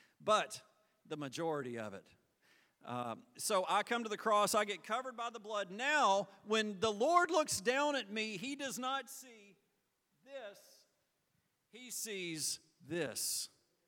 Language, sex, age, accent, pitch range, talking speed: English, male, 40-59, American, 145-225 Hz, 145 wpm